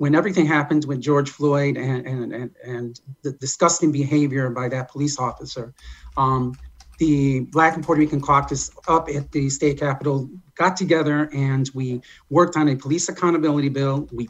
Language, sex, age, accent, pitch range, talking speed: English, male, 40-59, American, 135-160 Hz, 170 wpm